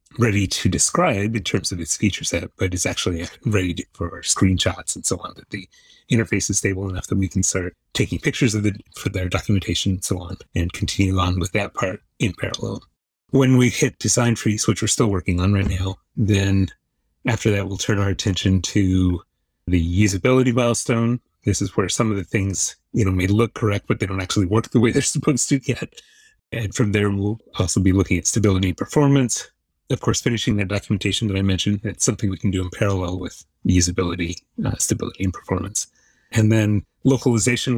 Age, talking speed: 30-49, 205 wpm